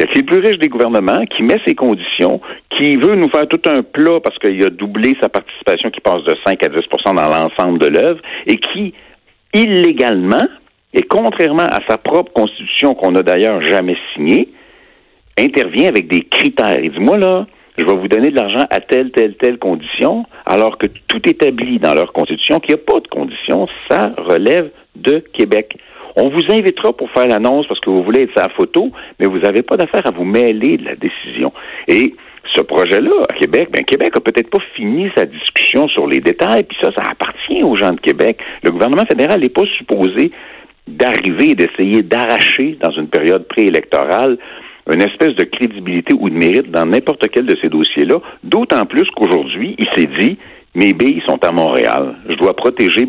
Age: 60-79